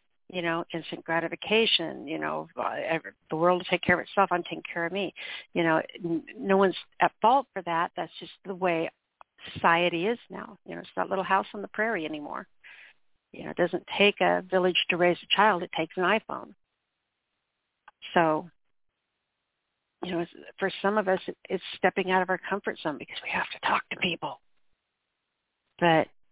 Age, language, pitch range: 60-79, English, 165-190 Hz